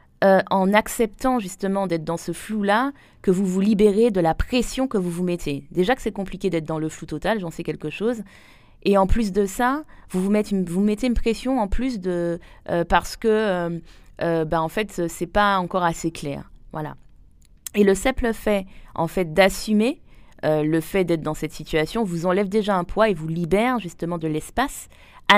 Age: 20-39